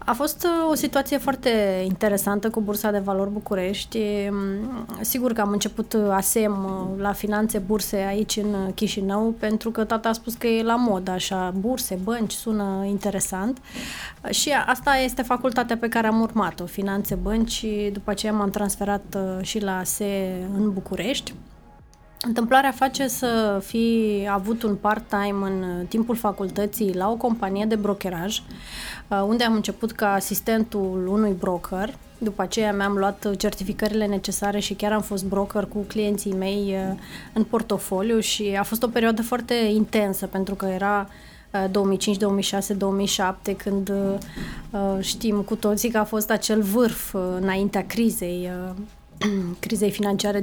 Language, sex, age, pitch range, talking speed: Romanian, female, 20-39, 195-225 Hz, 140 wpm